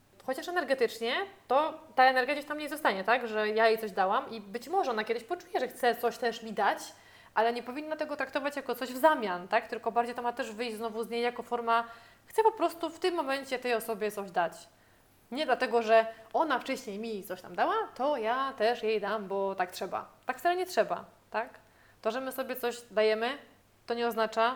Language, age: Polish, 20-39